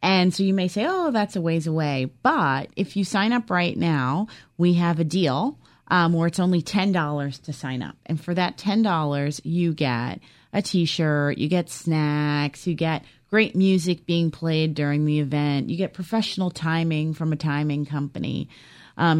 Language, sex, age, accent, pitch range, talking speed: English, female, 30-49, American, 140-180 Hz, 180 wpm